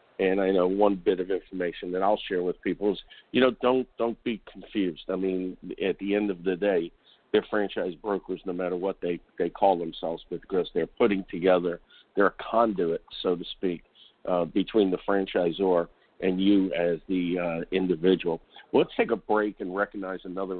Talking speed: 190 wpm